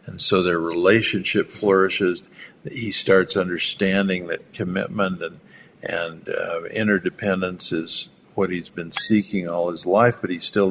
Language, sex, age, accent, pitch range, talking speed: English, male, 60-79, American, 85-105 Hz, 140 wpm